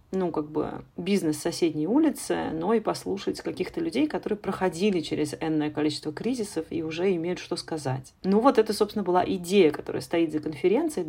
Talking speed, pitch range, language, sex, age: 175 wpm, 155-185 Hz, Russian, female, 30-49